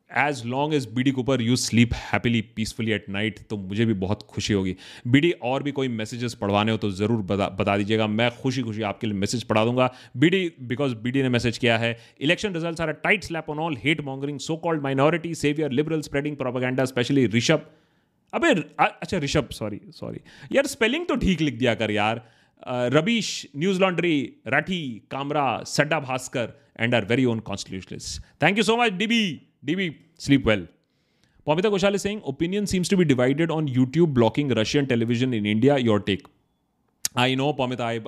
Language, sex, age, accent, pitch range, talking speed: Hindi, male, 30-49, native, 115-160 Hz, 180 wpm